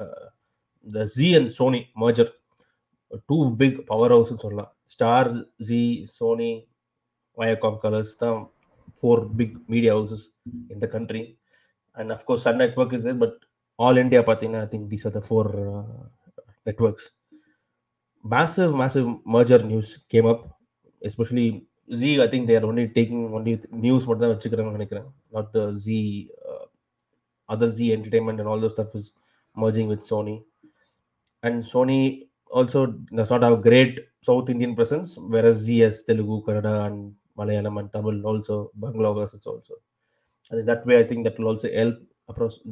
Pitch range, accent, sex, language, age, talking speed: 110-120 Hz, native, male, Tamil, 30-49, 160 wpm